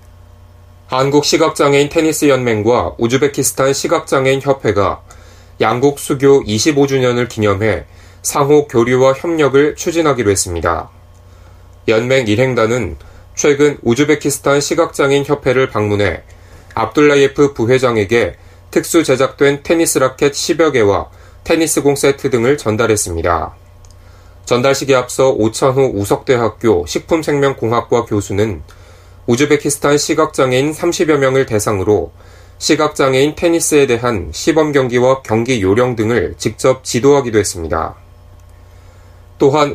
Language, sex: Korean, male